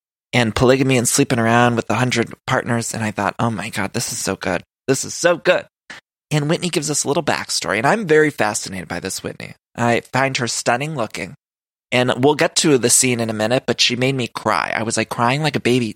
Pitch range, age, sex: 115-145 Hz, 20-39, male